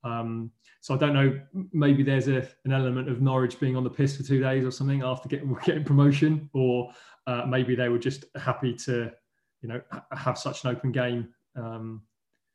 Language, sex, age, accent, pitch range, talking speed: English, male, 20-39, British, 120-135 Hz, 200 wpm